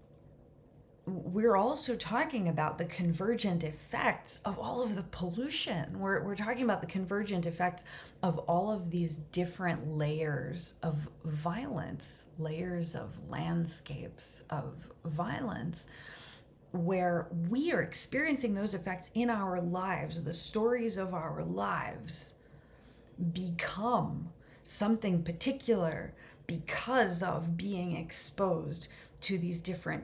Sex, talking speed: female, 110 wpm